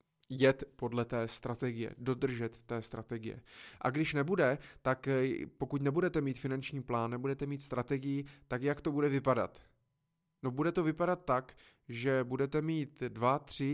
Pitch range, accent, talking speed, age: 125-145 Hz, native, 150 wpm, 20-39